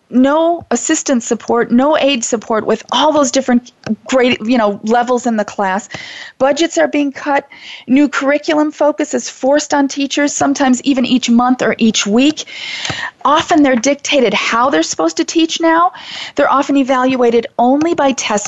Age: 40-59